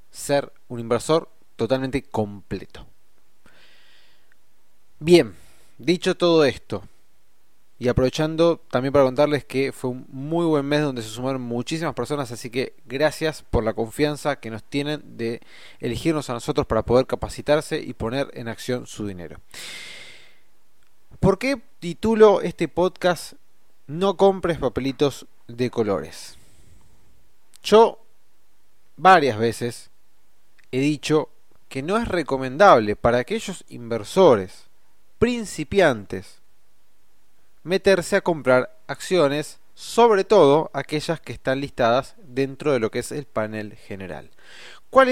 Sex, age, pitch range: male, 20-39, 115-165 Hz